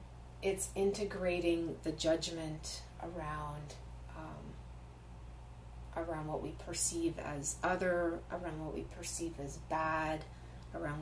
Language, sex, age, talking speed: English, female, 30-49, 105 wpm